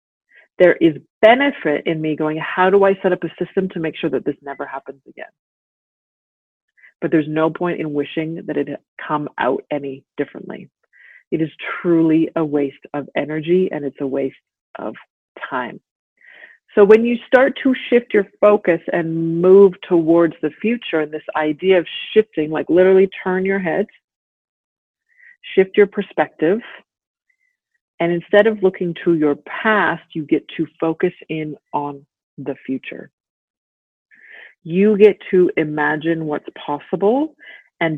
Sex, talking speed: female, 150 wpm